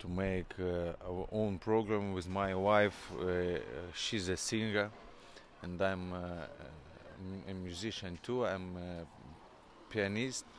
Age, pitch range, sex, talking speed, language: 30-49, 90-110 Hz, male, 125 wpm, English